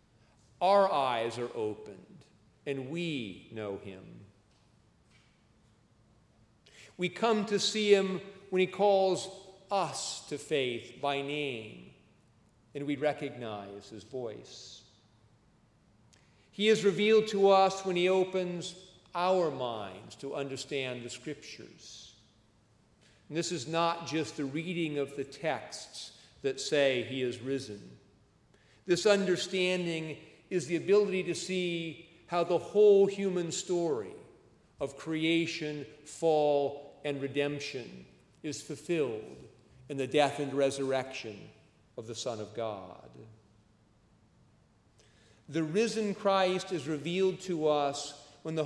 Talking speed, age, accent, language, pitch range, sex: 115 wpm, 50-69, American, English, 125-180 Hz, male